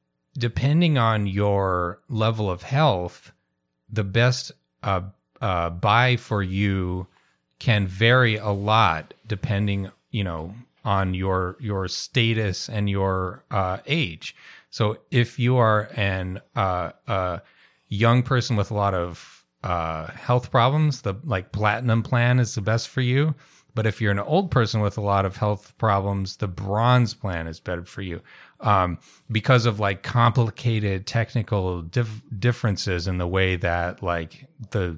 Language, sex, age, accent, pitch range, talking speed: English, male, 30-49, American, 95-120 Hz, 150 wpm